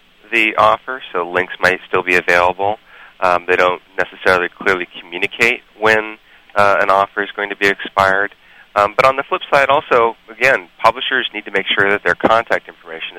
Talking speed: 180 wpm